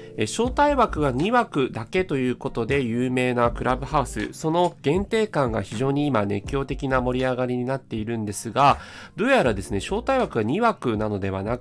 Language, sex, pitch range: Japanese, male, 110-170 Hz